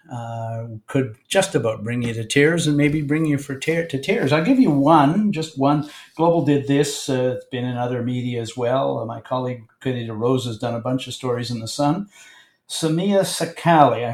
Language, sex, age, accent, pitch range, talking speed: English, male, 50-69, American, 125-155 Hz, 210 wpm